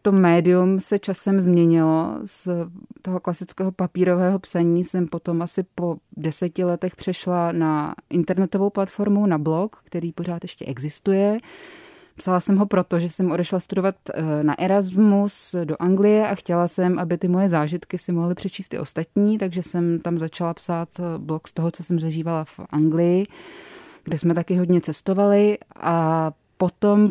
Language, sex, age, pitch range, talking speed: Czech, female, 20-39, 165-190 Hz, 155 wpm